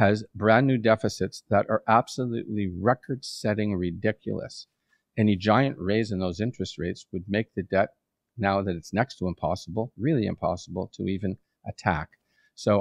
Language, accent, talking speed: English, American, 150 wpm